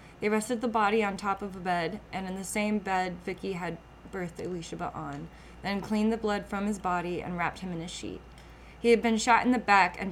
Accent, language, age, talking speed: American, English, 20-39, 235 wpm